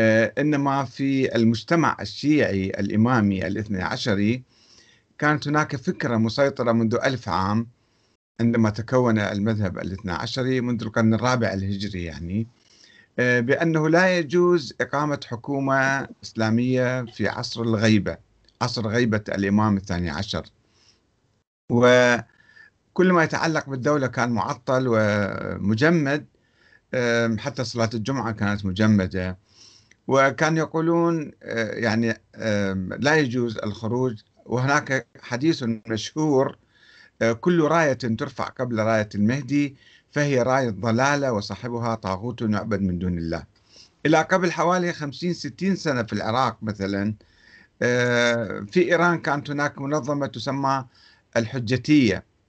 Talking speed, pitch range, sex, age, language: 105 wpm, 105-140 Hz, male, 50-69, Arabic